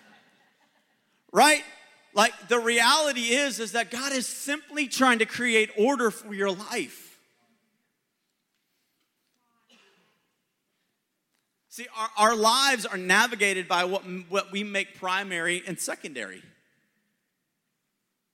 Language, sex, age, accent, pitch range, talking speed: English, male, 40-59, American, 175-230 Hz, 100 wpm